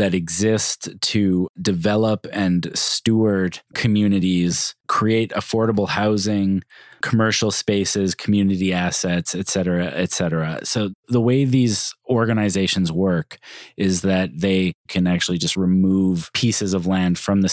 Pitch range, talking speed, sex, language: 90-105 Hz, 125 wpm, male, English